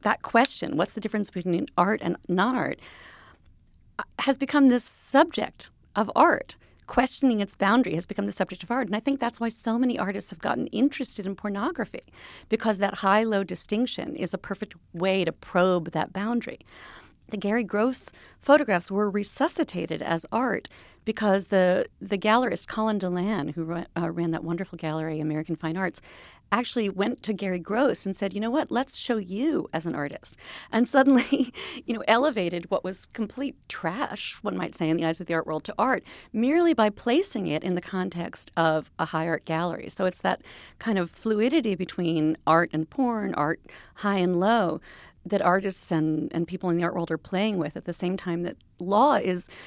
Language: English